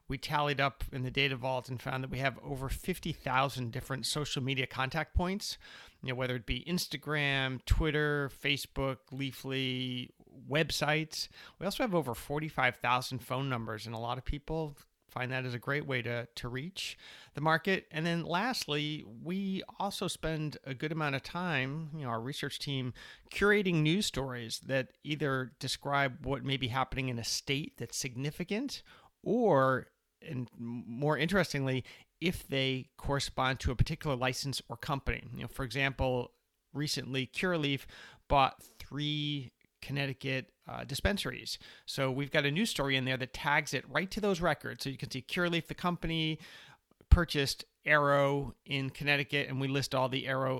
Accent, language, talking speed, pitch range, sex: American, English, 165 wpm, 130-150 Hz, male